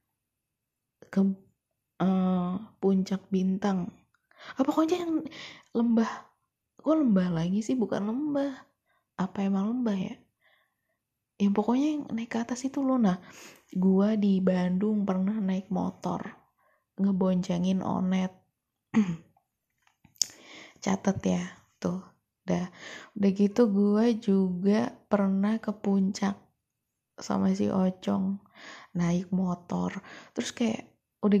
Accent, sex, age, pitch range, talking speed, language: native, female, 20-39, 195-235 Hz, 100 wpm, Indonesian